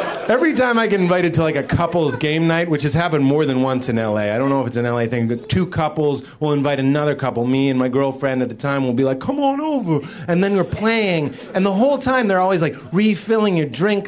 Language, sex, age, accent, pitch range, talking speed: English, male, 30-49, American, 130-195 Hz, 260 wpm